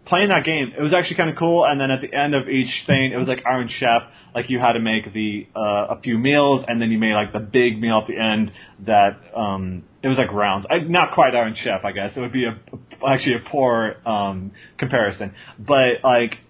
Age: 30-49